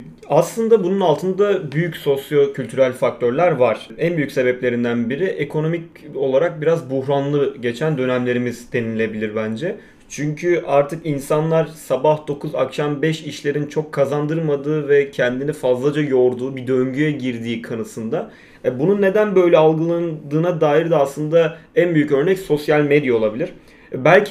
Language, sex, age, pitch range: Turkish, male, 30-49, 130-170 Hz